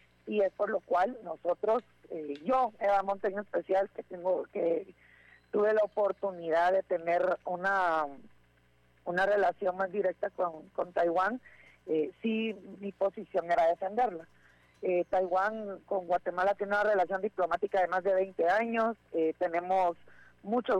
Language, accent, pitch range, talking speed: Spanish, Mexican, 175-210 Hz, 140 wpm